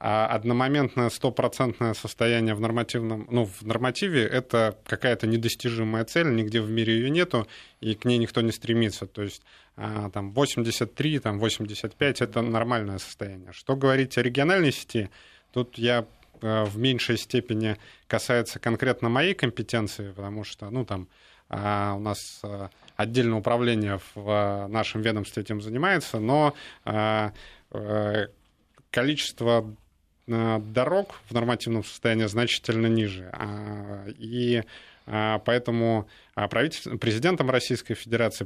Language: Russian